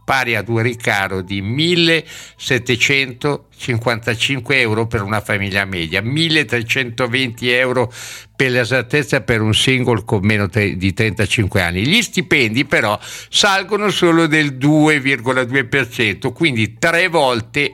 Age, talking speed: 60-79, 110 wpm